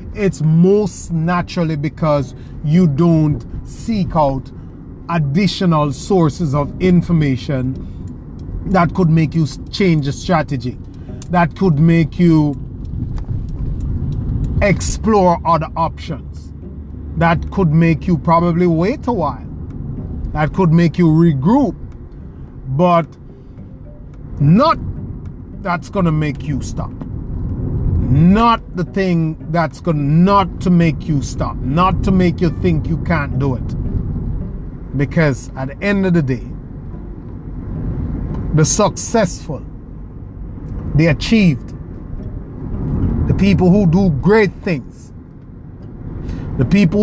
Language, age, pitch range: English, 30-49, 135-185 Hz